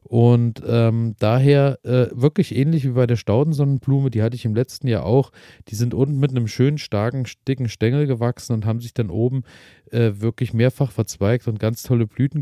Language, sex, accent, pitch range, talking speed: German, male, German, 110-130 Hz, 195 wpm